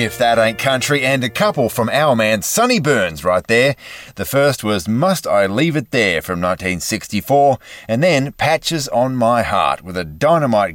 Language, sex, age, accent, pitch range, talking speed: English, male, 30-49, Australian, 95-145 Hz, 185 wpm